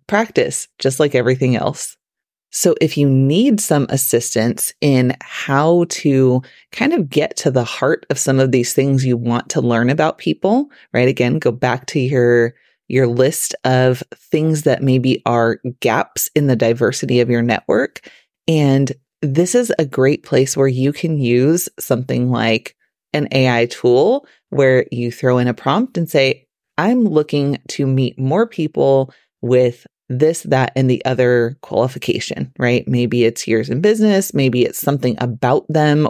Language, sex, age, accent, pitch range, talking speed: English, female, 30-49, American, 125-155 Hz, 165 wpm